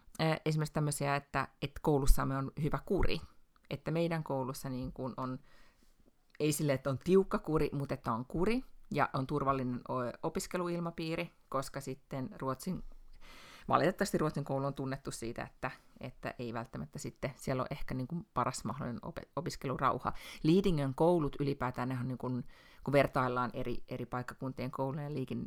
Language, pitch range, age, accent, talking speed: Finnish, 130-155 Hz, 30-49, native, 145 wpm